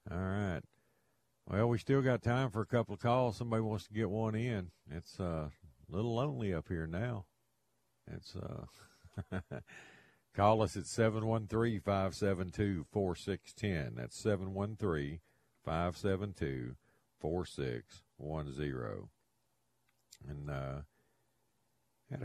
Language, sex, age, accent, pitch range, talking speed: English, male, 50-69, American, 80-105 Hz, 100 wpm